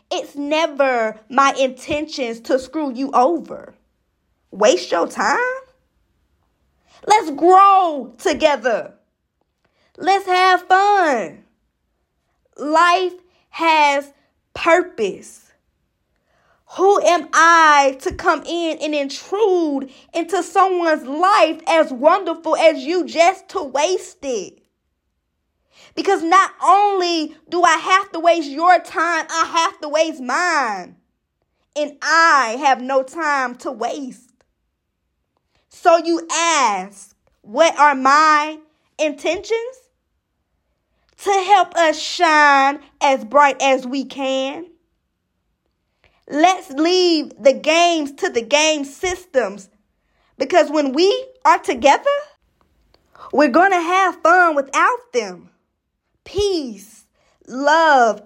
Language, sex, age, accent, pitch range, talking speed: English, female, 20-39, American, 275-360 Hz, 100 wpm